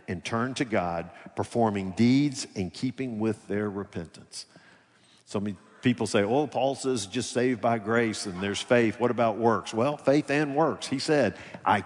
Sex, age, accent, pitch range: male, 50-69, American, 100-140 Hz